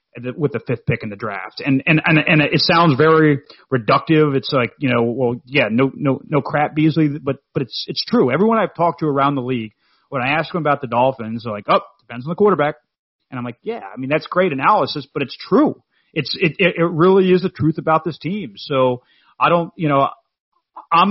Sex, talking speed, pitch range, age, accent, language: male, 225 wpm, 120-155 Hz, 30-49, American, English